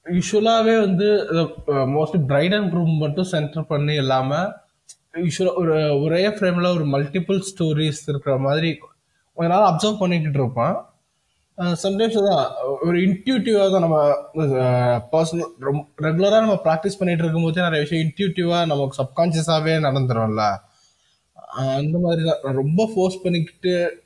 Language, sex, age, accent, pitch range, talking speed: Tamil, male, 20-39, native, 135-180 Hz, 120 wpm